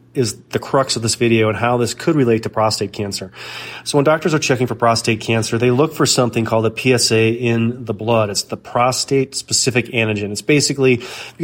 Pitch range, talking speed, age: 115-130 Hz, 205 wpm, 30-49